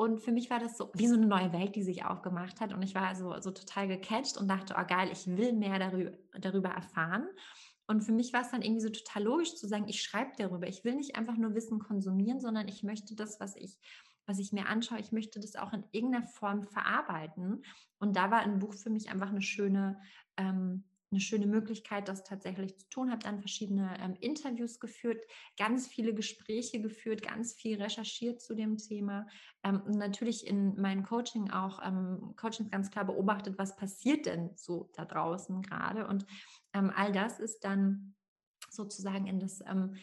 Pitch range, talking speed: 195-225 Hz, 205 wpm